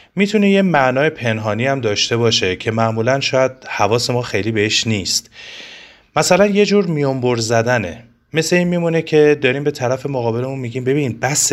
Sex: male